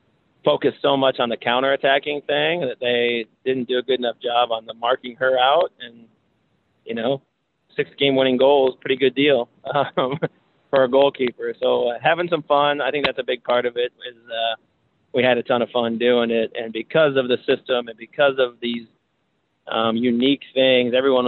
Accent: American